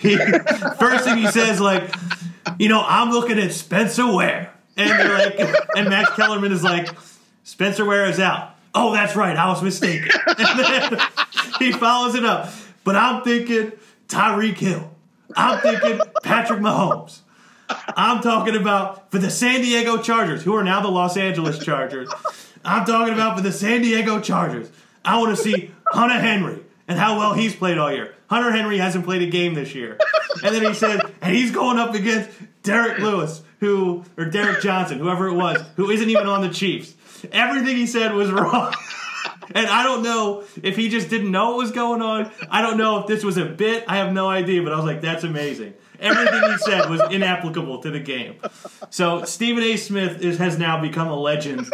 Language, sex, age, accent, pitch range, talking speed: English, male, 30-49, American, 185-230 Hz, 195 wpm